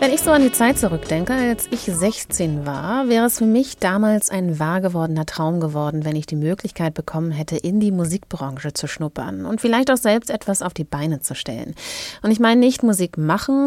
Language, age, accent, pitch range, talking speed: German, 30-49, German, 160-220 Hz, 205 wpm